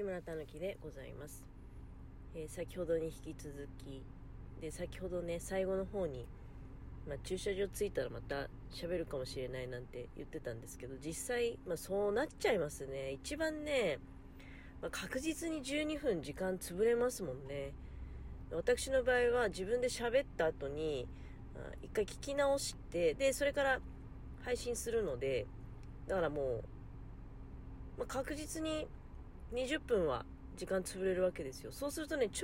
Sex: female